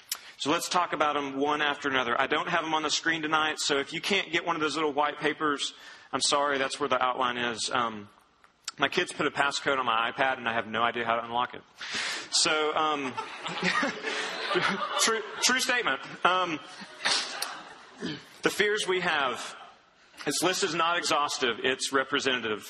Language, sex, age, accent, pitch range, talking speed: English, male, 30-49, American, 140-185 Hz, 180 wpm